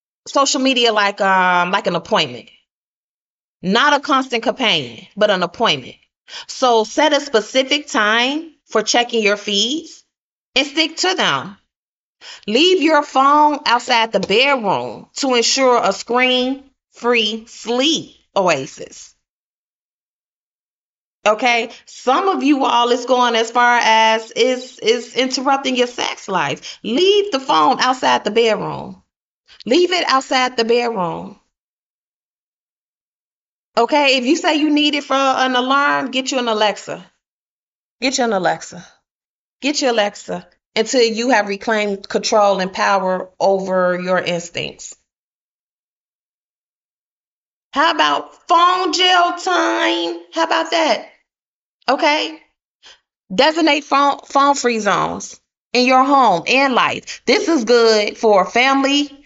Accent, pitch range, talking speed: American, 220-285 Hz, 120 wpm